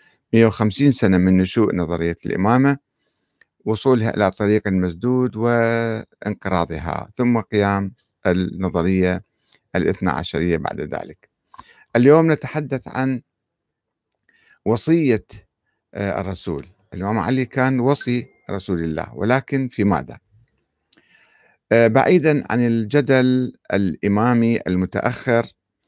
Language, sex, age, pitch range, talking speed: Arabic, male, 50-69, 100-130 Hz, 85 wpm